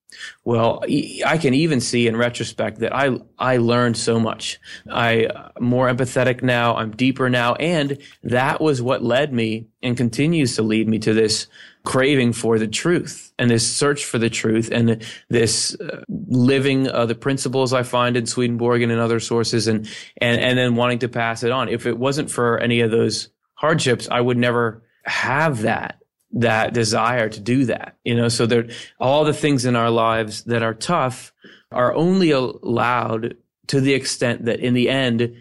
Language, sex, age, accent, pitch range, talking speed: English, male, 30-49, American, 115-130 Hz, 185 wpm